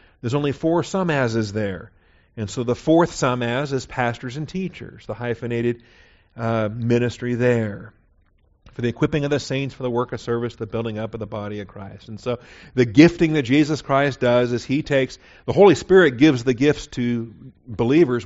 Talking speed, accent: 195 wpm, American